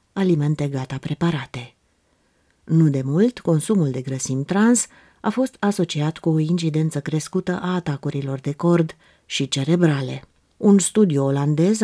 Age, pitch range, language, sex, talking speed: 30-49, 140-185 Hz, Romanian, female, 130 wpm